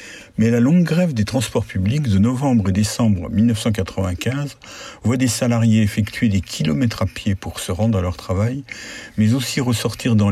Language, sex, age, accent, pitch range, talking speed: French, male, 60-79, French, 100-125 Hz, 175 wpm